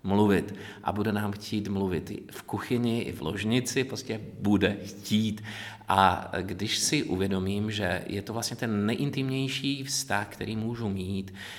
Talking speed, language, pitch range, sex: 150 wpm, Czech, 100-120 Hz, male